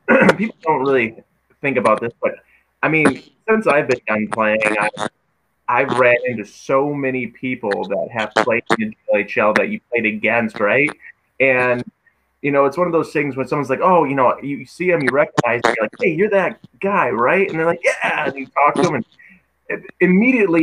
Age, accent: 20-39, American